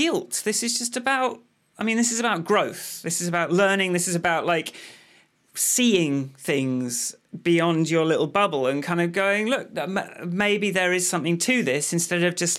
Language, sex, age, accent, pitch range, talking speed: English, male, 30-49, British, 165-215 Hz, 185 wpm